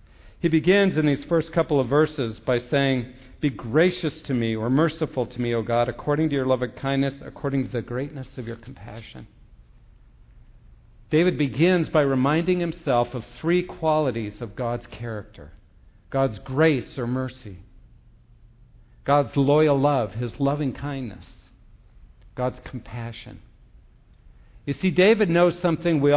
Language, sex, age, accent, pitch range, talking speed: English, male, 50-69, American, 120-165 Hz, 140 wpm